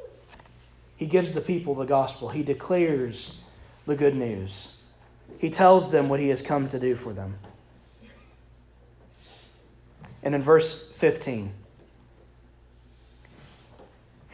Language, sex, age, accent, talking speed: English, male, 30-49, American, 110 wpm